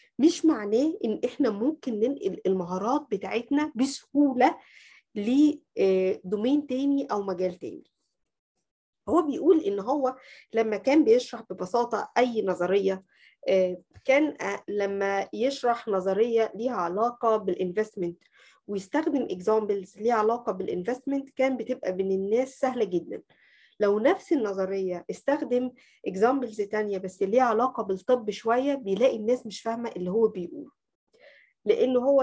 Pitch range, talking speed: 200-265 Hz, 115 wpm